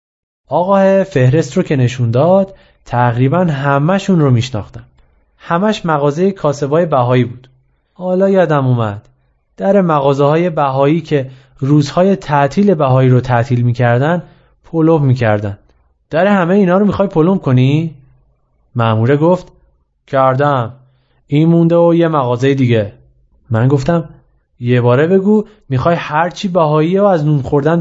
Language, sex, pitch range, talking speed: Persian, male, 125-175 Hz, 125 wpm